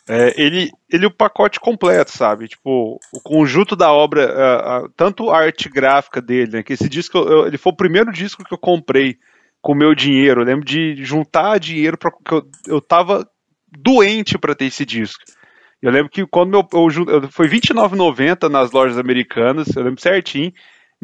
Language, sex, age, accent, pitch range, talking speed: Portuguese, male, 20-39, Brazilian, 135-180 Hz, 190 wpm